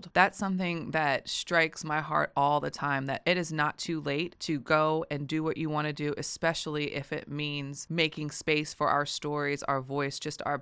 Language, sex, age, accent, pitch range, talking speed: English, female, 20-39, American, 145-180 Hz, 210 wpm